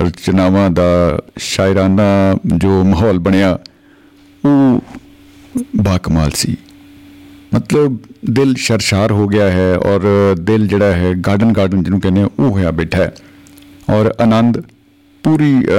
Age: 50-69